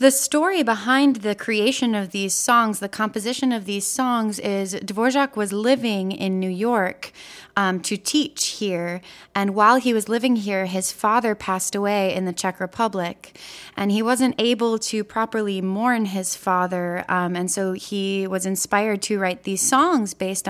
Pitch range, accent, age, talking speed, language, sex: 185-220 Hz, American, 20-39, 170 wpm, English, female